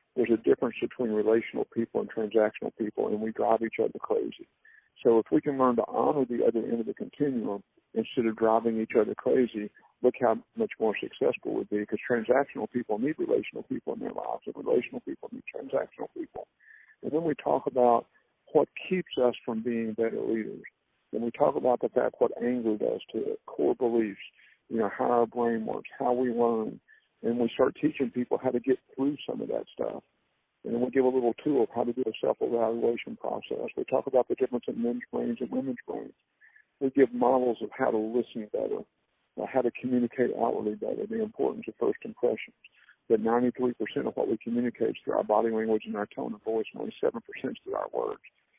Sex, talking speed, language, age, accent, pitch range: male, 205 wpm, English, 50-69, American, 115-130 Hz